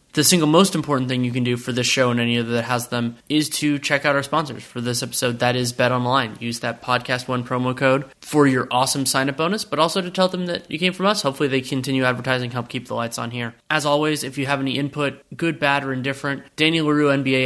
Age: 20-39